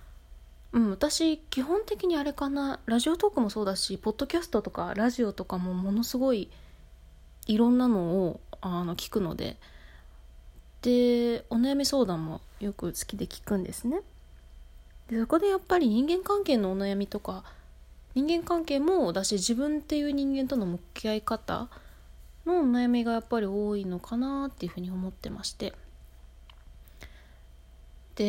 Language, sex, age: Japanese, female, 20-39